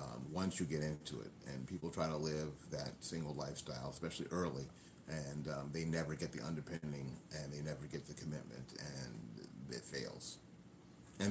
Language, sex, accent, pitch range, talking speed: English, male, American, 75-115 Hz, 175 wpm